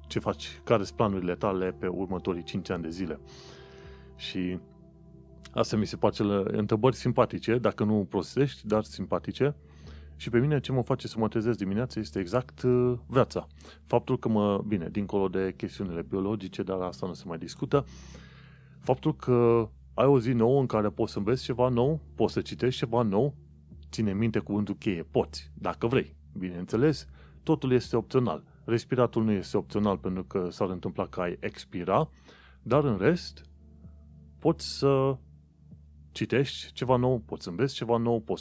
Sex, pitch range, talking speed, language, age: male, 90-125 Hz, 165 wpm, Romanian, 30-49